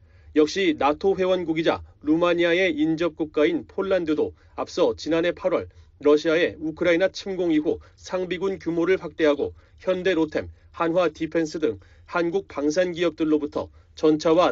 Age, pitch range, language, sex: 30-49, 145-175 Hz, Korean, male